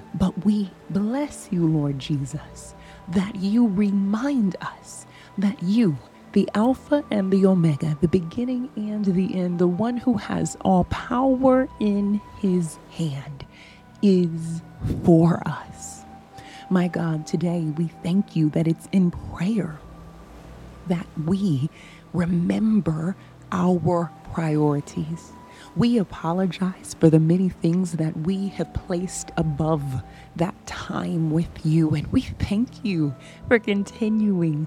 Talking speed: 120 wpm